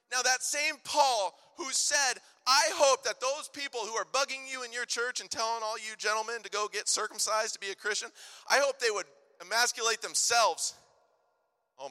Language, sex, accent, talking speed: English, male, American, 190 wpm